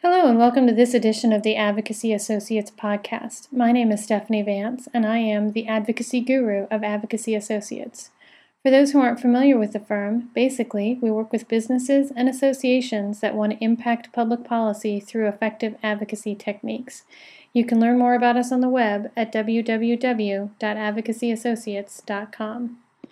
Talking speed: 160 wpm